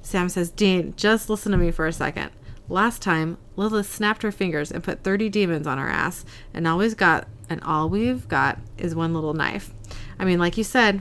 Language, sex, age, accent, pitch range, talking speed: English, female, 30-49, American, 155-200 Hz, 200 wpm